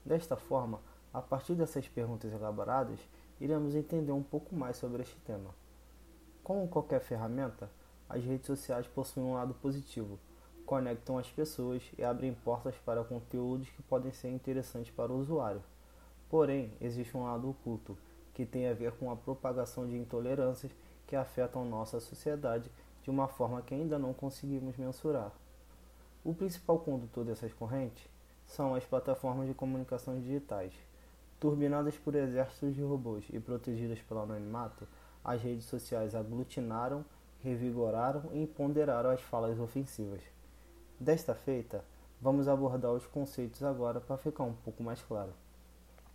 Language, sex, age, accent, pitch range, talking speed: Portuguese, male, 20-39, Brazilian, 115-135 Hz, 140 wpm